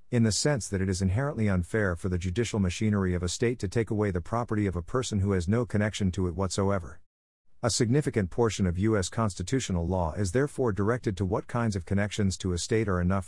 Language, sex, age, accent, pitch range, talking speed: English, male, 50-69, American, 90-115 Hz, 225 wpm